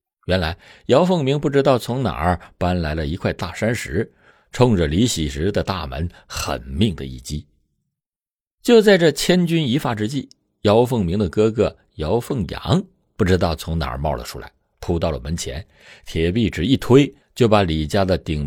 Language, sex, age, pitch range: Chinese, male, 50-69, 80-120 Hz